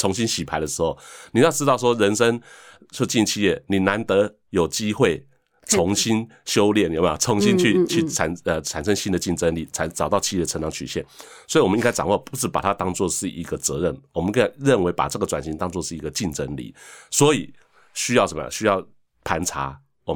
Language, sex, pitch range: Chinese, male, 85-115 Hz